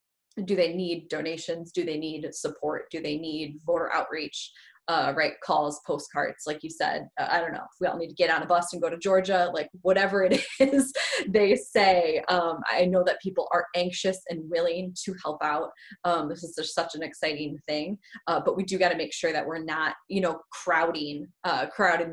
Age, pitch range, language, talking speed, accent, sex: 20-39, 165-195 Hz, English, 215 wpm, American, female